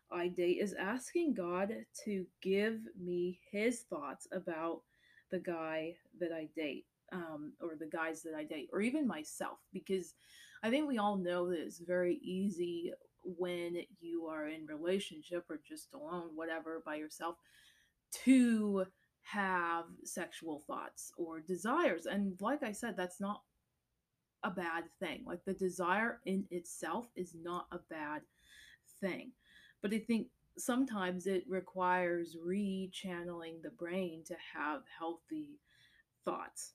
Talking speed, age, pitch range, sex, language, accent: 140 wpm, 20-39, 170-220 Hz, female, English, American